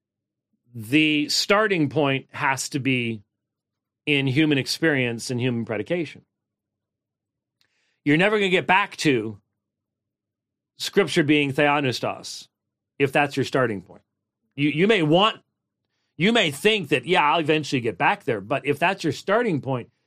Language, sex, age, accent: English, male, 40-59, American